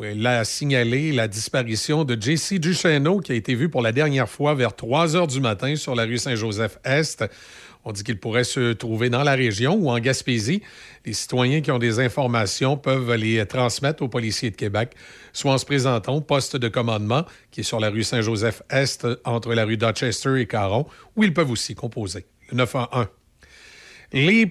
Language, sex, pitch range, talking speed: French, male, 125-175 Hz, 190 wpm